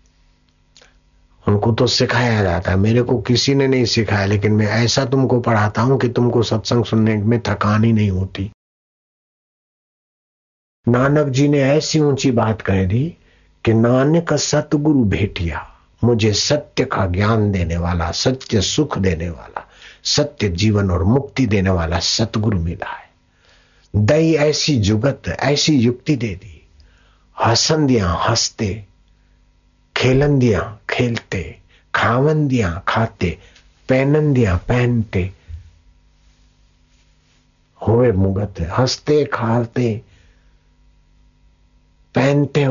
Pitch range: 85-125 Hz